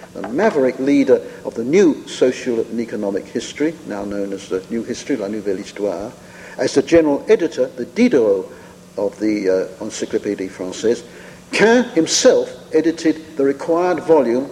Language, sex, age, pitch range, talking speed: English, male, 50-69, 115-190 Hz, 150 wpm